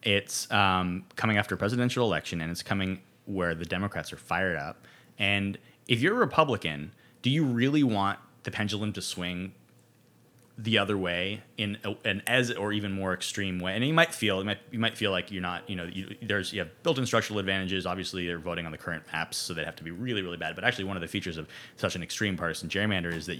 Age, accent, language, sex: 20-39, American, English, male